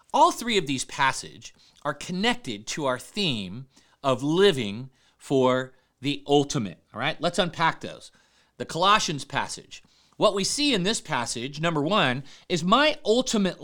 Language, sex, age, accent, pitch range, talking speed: English, male, 40-59, American, 130-185 Hz, 150 wpm